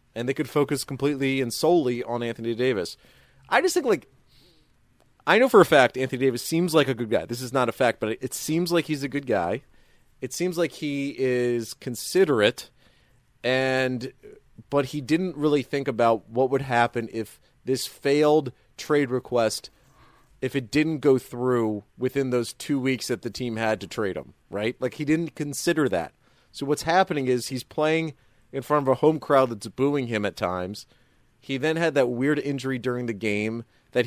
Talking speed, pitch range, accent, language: 190 wpm, 120-145 Hz, American, English